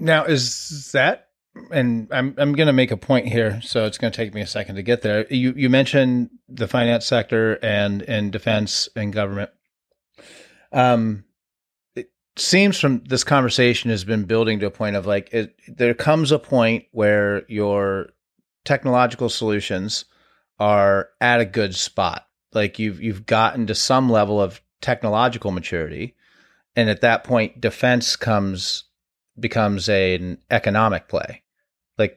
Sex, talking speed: male, 150 wpm